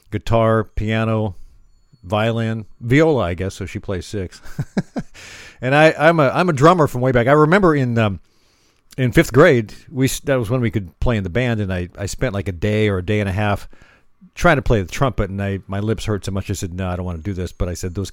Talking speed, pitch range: 245 wpm, 100-140 Hz